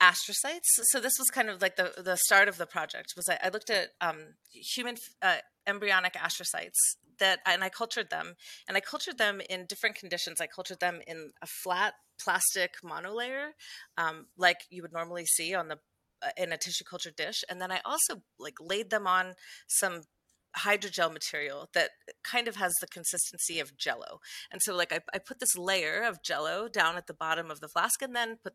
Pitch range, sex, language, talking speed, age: 175-225 Hz, female, English, 200 wpm, 30-49